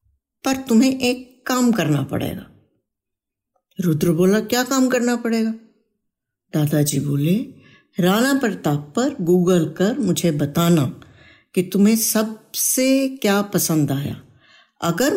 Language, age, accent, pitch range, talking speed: Hindi, 60-79, native, 165-225 Hz, 110 wpm